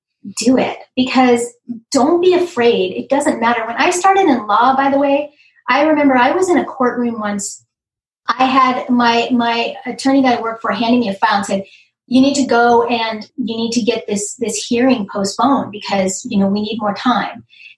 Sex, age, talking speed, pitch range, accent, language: female, 30-49, 205 wpm, 225-270 Hz, American, English